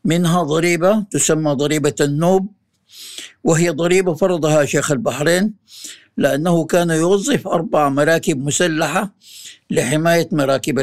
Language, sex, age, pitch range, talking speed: Arabic, male, 60-79, 145-180 Hz, 100 wpm